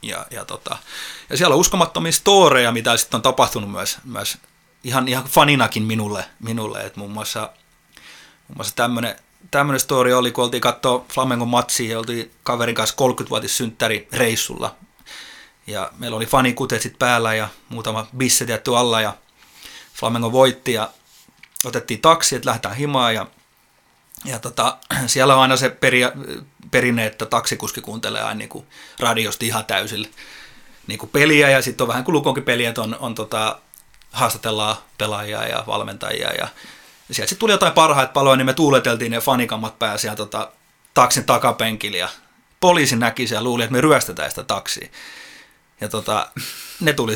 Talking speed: 150 wpm